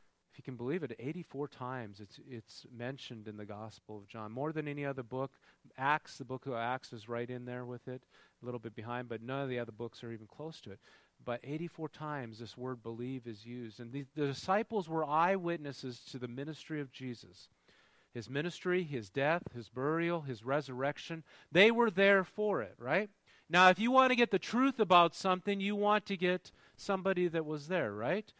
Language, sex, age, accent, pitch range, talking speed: English, male, 40-59, American, 125-185 Hz, 205 wpm